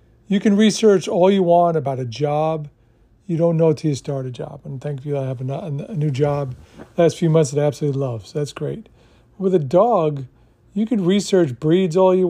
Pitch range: 140-185 Hz